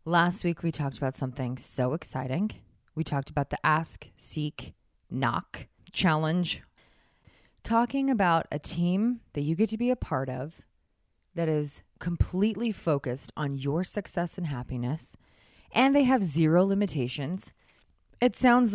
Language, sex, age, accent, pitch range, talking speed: English, female, 20-39, American, 145-210 Hz, 140 wpm